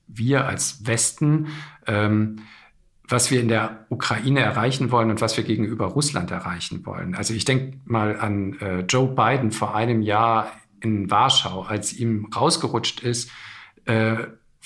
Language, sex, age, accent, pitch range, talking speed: German, male, 50-69, German, 110-130 Hz, 145 wpm